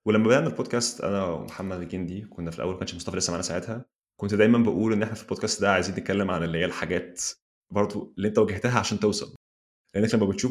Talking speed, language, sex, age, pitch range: 210 wpm, Arabic, male, 20-39, 90-105 Hz